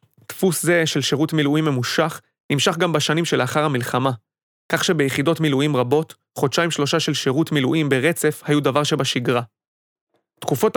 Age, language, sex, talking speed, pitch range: 30-49, Hebrew, male, 140 wpm, 135-165 Hz